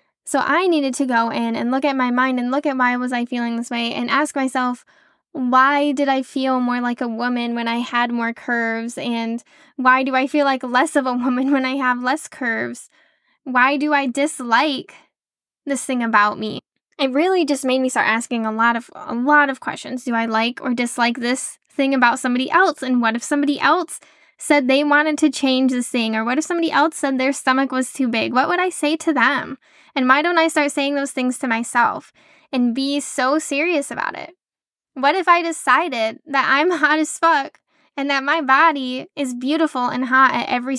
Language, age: English, 10-29